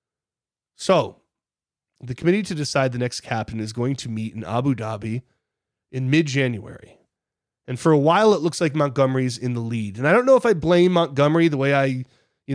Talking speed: 190 wpm